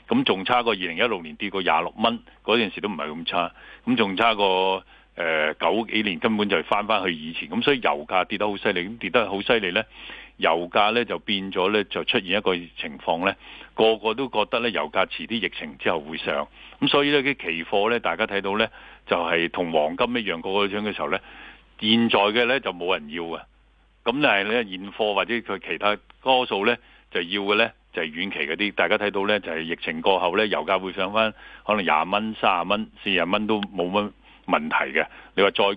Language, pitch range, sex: Chinese, 95-115 Hz, male